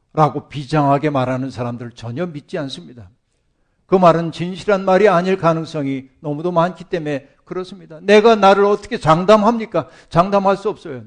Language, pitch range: Korean, 130-190 Hz